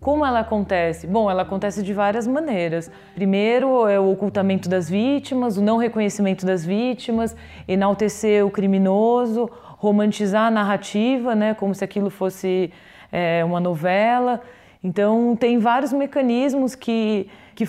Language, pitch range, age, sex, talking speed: Portuguese, 195-245 Hz, 20-39, female, 135 wpm